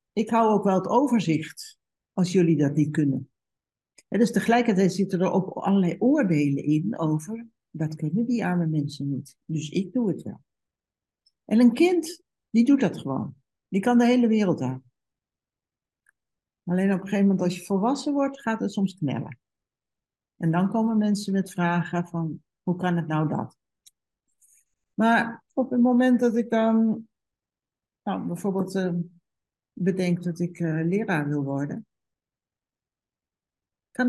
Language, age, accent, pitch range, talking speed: Dutch, 60-79, Dutch, 170-230 Hz, 155 wpm